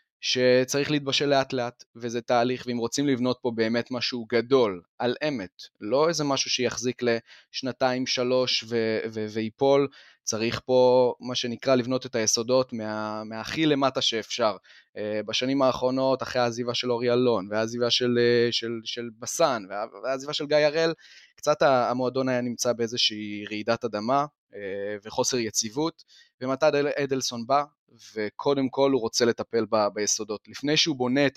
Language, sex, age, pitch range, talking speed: Hebrew, male, 20-39, 115-135 Hz, 140 wpm